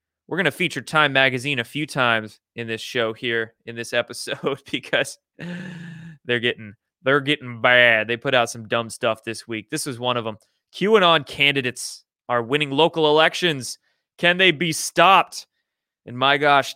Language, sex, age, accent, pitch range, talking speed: English, male, 20-39, American, 120-160 Hz, 170 wpm